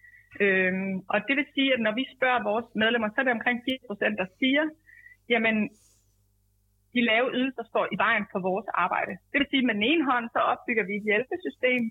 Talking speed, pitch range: 215 wpm, 205-265 Hz